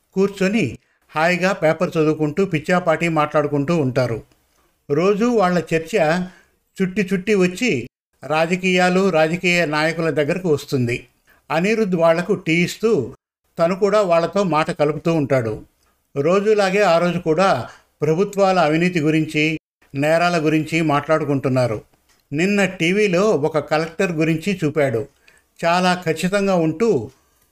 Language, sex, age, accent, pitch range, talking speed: Telugu, male, 50-69, native, 150-180 Hz, 100 wpm